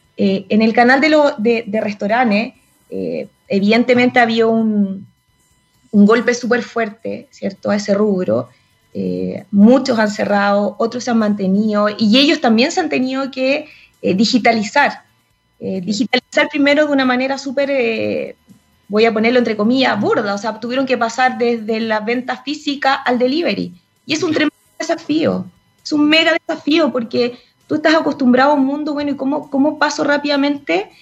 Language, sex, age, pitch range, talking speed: Spanish, female, 20-39, 215-280 Hz, 165 wpm